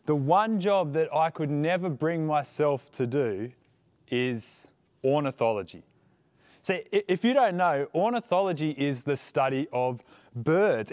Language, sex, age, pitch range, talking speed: English, male, 20-39, 140-185 Hz, 130 wpm